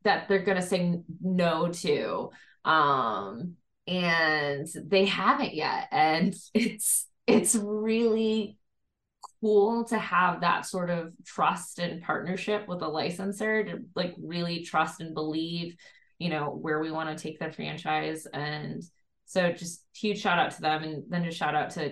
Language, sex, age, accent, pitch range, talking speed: English, female, 20-39, American, 150-200 Hz, 155 wpm